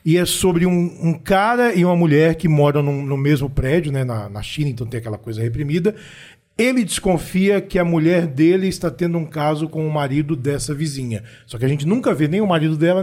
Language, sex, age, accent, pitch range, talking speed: Portuguese, male, 40-59, Brazilian, 145-185 Hz, 225 wpm